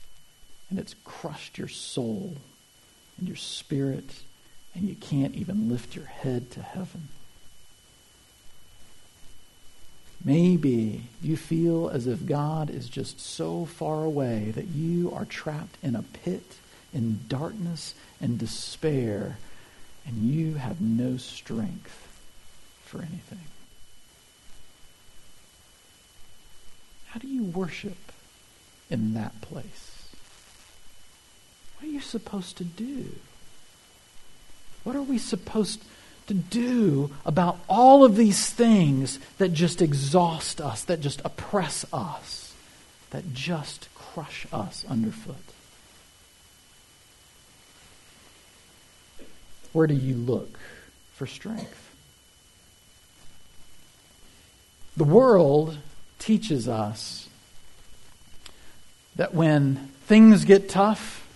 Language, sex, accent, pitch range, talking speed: English, male, American, 110-180 Hz, 95 wpm